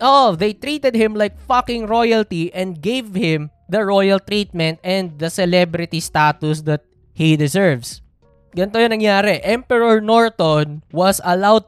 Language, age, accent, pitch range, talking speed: Filipino, 20-39, native, 150-200 Hz, 140 wpm